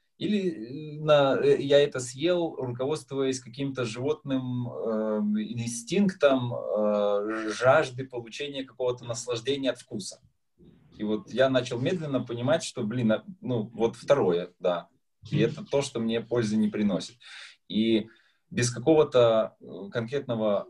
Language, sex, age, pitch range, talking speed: Russian, male, 20-39, 105-135 Hz, 120 wpm